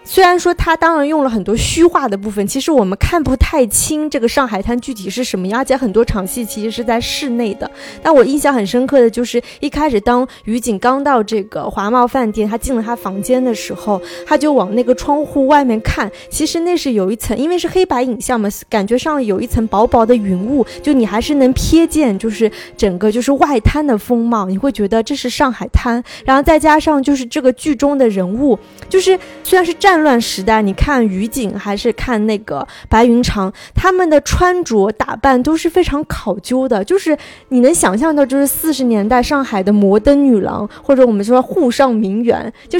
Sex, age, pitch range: female, 20-39, 220-295 Hz